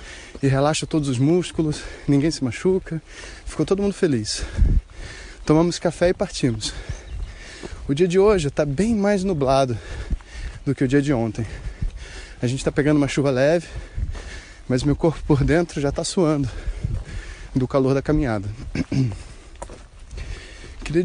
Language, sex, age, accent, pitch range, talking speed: Portuguese, male, 20-39, Brazilian, 105-165 Hz, 145 wpm